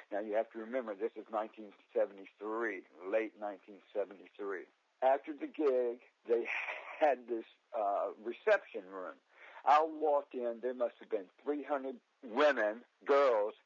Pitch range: 110-145 Hz